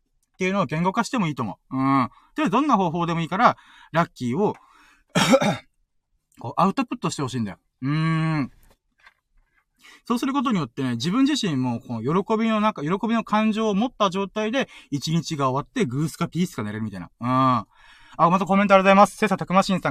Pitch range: 135-225 Hz